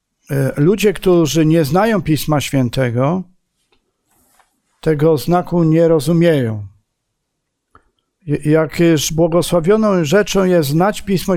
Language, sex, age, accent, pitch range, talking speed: Polish, male, 50-69, native, 145-175 Hz, 85 wpm